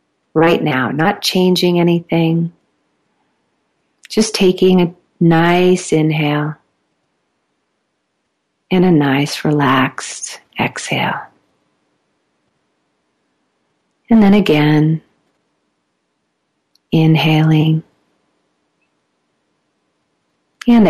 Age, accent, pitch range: 50-69, American, 140-175 Hz